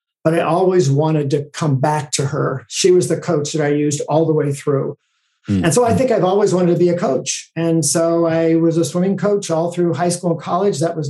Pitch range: 160-190 Hz